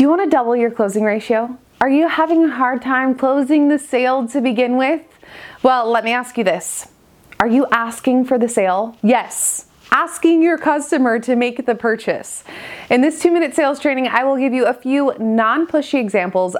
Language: English